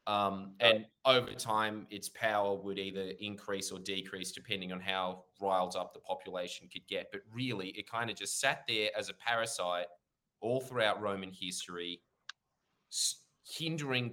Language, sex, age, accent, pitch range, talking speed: English, male, 20-39, Australian, 95-125 Hz, 155 wpm